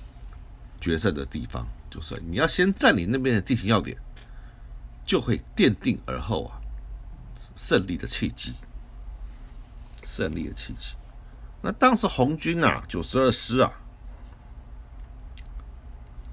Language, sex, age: Chinese, male, 50-69